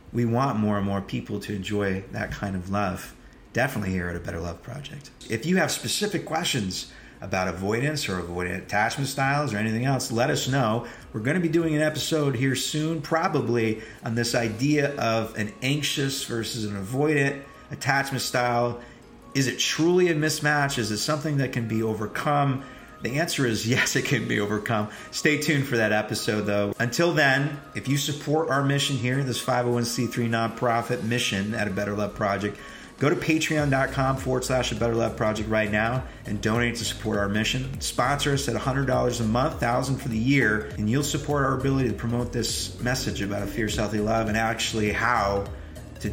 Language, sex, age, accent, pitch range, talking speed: English, male, 40-59, American, 105-140 Hz, 185 wpm